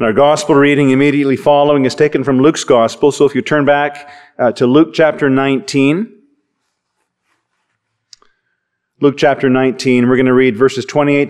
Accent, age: American, 40-59